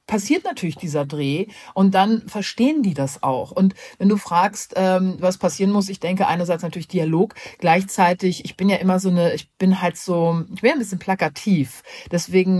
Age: 40-59